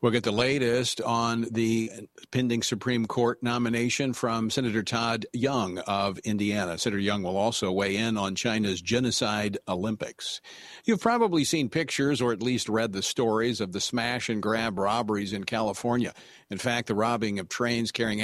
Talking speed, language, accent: 170 wpm, English, American